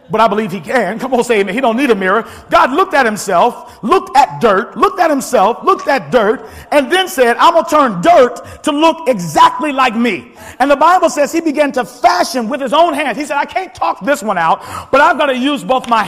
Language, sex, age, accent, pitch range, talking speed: English, male, 50-69, American, 265-355 Hz, 255 wpm